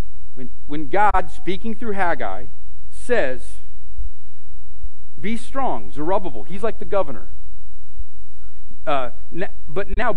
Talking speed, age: 95 wpm, 40-59